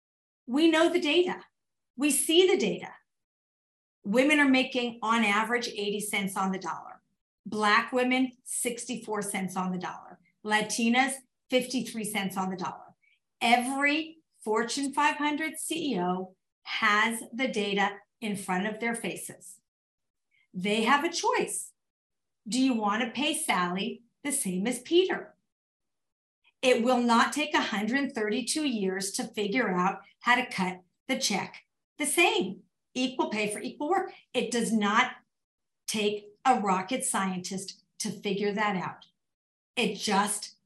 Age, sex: 50-69, female